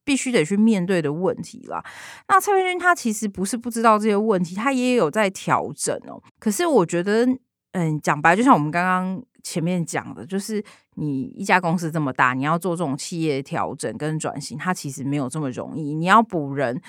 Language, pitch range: Chinese, 160-225 Hz